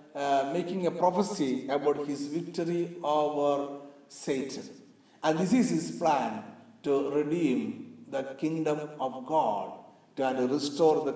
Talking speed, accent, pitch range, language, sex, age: 125 wpm, native, 145-210 Hz, Malayalam, male, 60-79